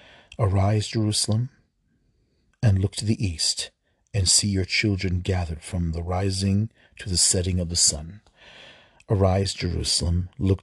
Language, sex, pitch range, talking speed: English, male, 85-100 Hz, 135 wpm